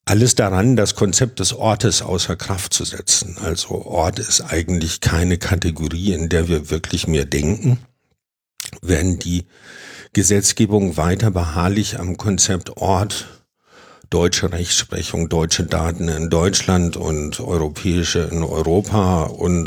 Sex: male